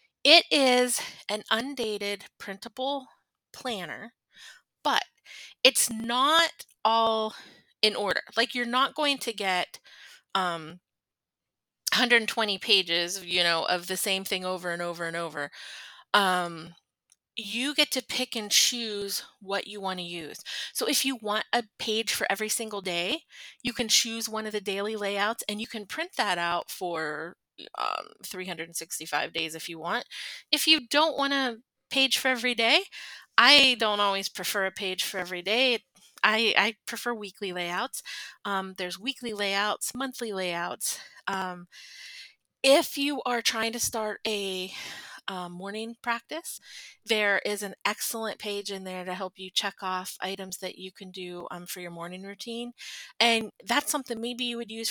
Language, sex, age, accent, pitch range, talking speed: English, female, 30-49, American, 190-250 Hz, 155 wpm